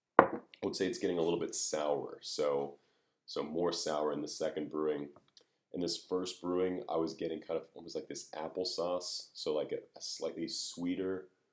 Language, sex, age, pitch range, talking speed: English, male, 30-49, 75-115 Hz, 185 wpm